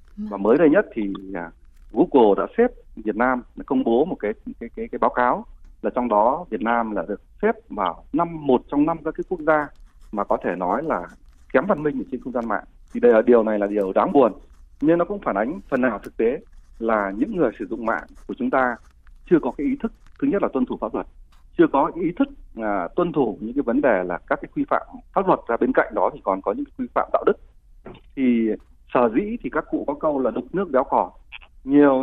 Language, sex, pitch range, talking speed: Vietnamese, male, 105-175 Hz, 250 wpm